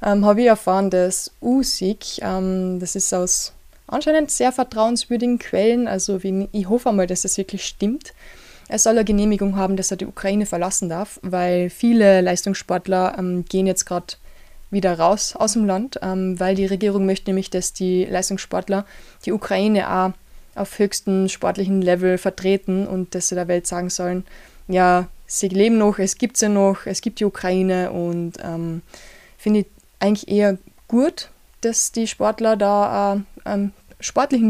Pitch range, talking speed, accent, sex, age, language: 185-220 Hz, 165 wpm, German, female, 20-39, German